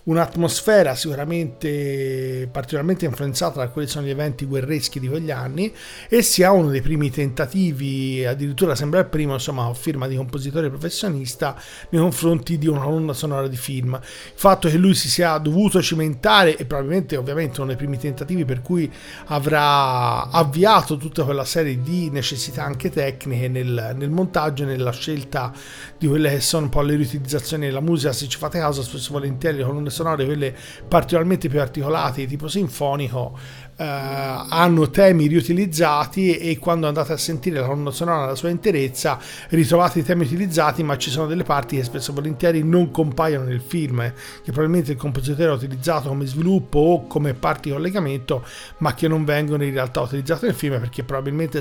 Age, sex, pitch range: 40-59, male, 135-165 Hz